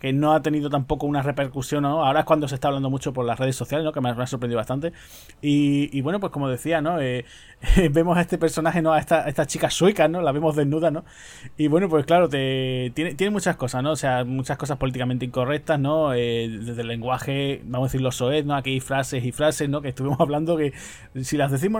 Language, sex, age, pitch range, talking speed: Spanish, male, 20-39, 130-155 Hz, 245 wpm